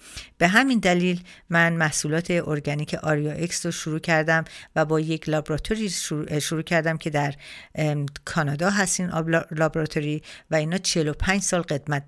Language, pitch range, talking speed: Persian, 155-185 Hz, 145 wpm